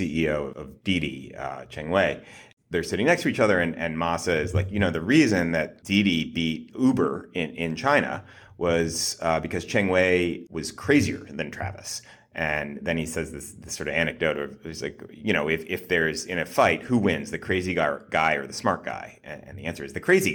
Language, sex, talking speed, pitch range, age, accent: English, male, 210 wpm, 80-100 Hz, 30-49, American